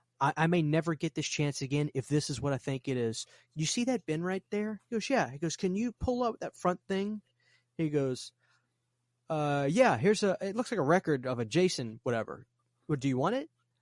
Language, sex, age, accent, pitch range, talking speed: English, male, 20-39, American, 130-180 Hz, 240 wpm